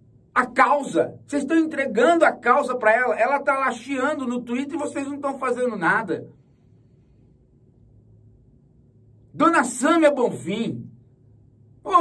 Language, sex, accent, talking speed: Portuguese, male, Brazilian, 120 wpm